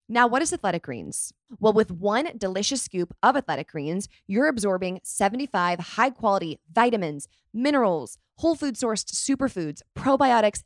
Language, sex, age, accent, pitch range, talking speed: English, female, 20-39, American, 175-235 Hz, 140 wpm